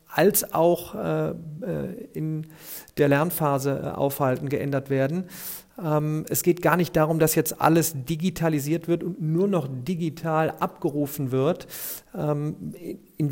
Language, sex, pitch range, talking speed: German, male, 150-170 Hz, 115 wpm